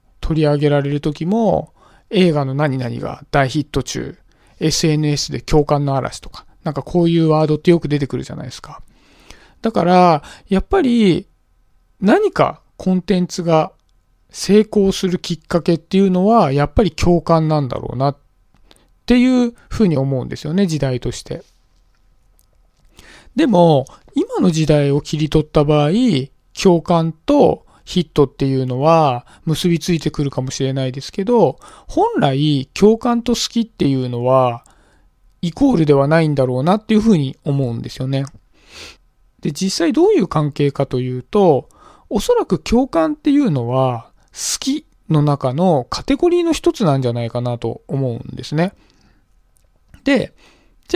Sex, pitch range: male, 135-195 Hz